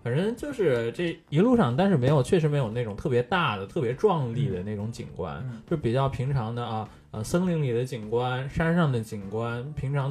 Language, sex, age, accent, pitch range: Chinese, male, 20-39, native, 115-155 Hz